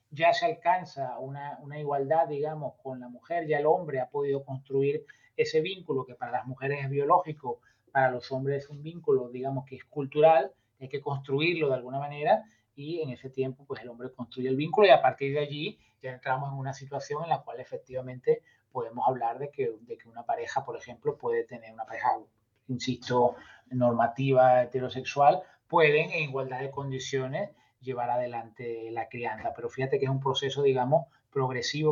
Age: 30-49